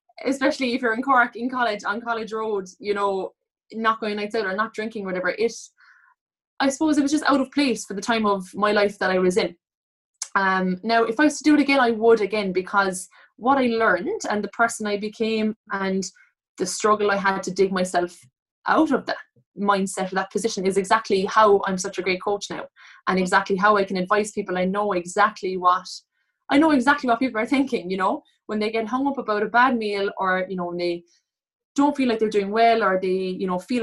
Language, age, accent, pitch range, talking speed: English, 20-39, Irish, 195-245 Hz, 230 wpm